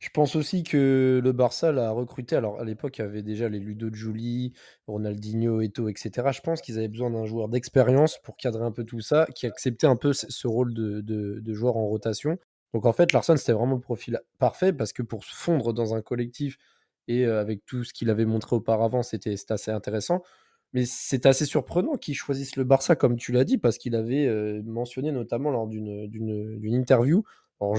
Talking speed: 215 wpm